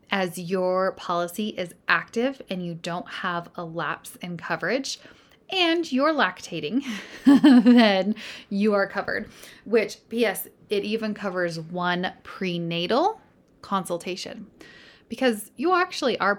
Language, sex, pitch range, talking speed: English, female, 175-240 Hz, 115 wpm